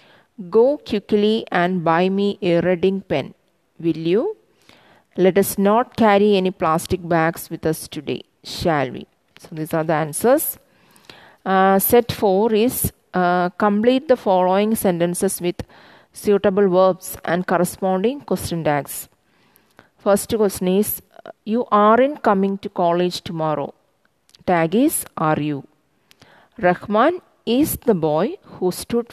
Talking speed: 130 wpm